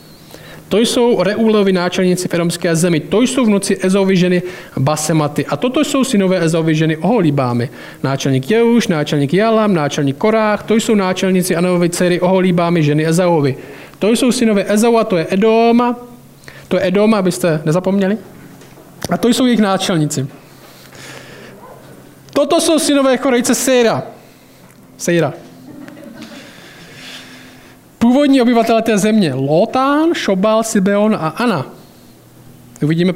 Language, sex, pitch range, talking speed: Czech, male, 155-220 Hz, 120 wpm